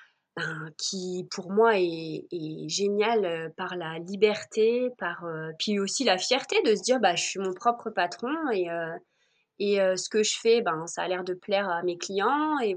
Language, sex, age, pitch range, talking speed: French, female, 20-39, 185-215 Hz, 205 wpm